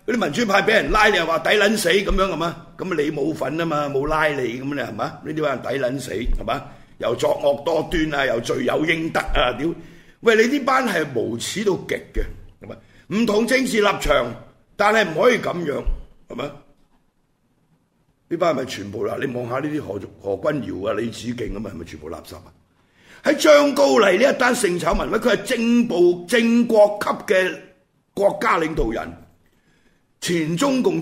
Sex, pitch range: male, 155-240 Hz